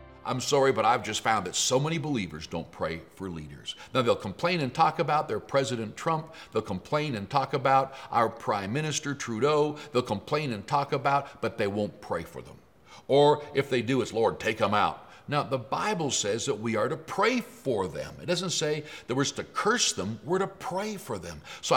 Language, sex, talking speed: English, male, 210 wpm